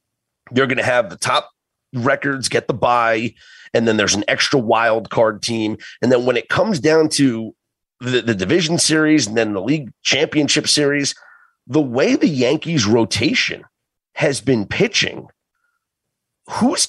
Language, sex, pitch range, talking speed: English, male, 110-150 Hz, 155 wpm